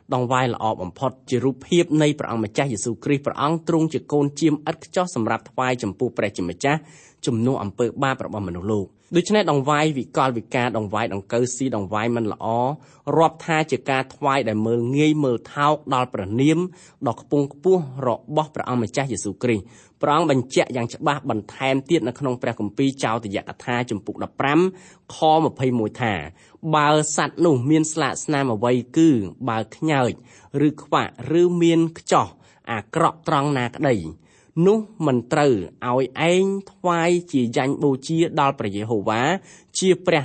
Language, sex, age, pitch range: English, male, 20-39, 115-155 Hz